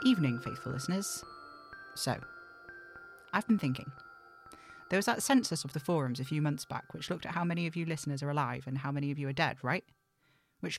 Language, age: English, 40-59